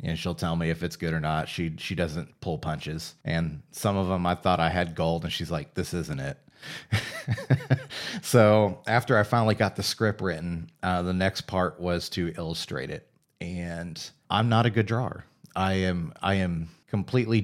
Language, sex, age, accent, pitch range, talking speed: English, male, 30-49, American, 85-105 Hz, 195 wpm